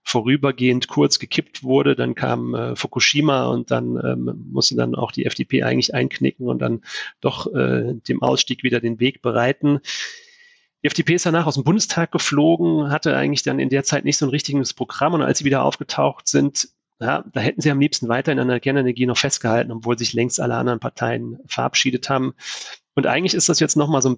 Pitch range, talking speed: 115-140 Hz, 205 wpm